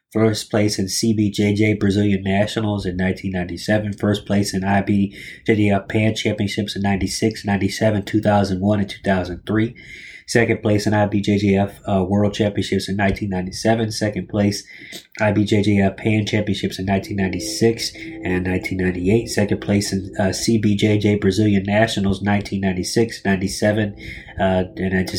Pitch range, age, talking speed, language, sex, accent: 95-110 Hz, 20-39, 110 wpm, English, male, American